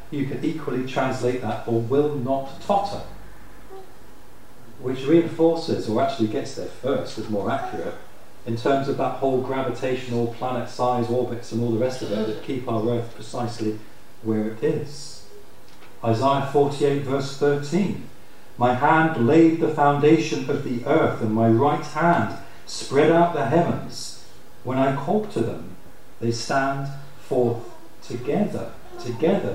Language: English